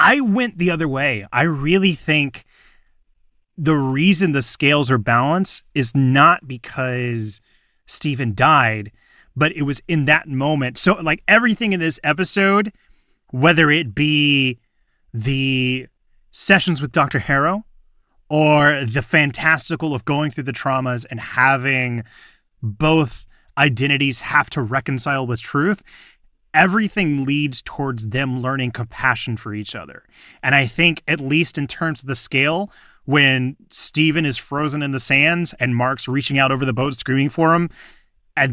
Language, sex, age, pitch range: English, male, 30-49, 125-160 Hz